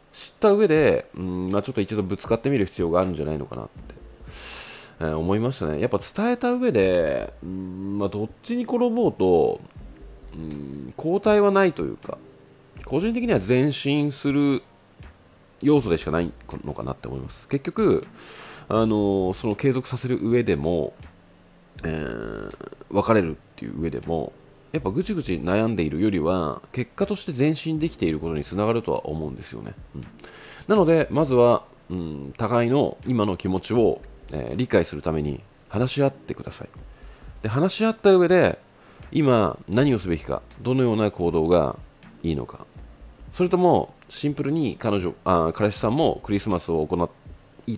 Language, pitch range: Japanese, 80-130 Hz